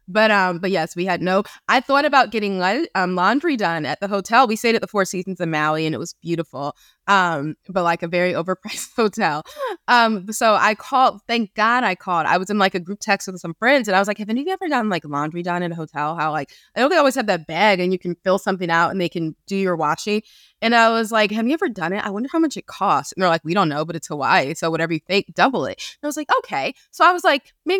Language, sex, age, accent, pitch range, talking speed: English, female, 20-39, American, 170-240 Hz, 285 wpm